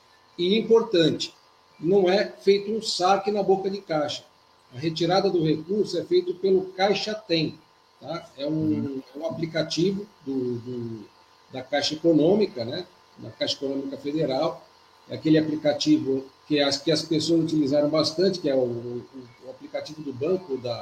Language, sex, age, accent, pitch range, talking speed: Portuguese, male, 50-69, Brazilian, 150-195 Hz, 160 wpm